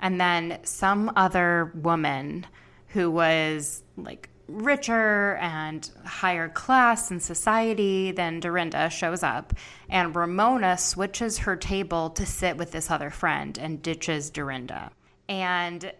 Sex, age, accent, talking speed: female, 20-39, American, 125 wpm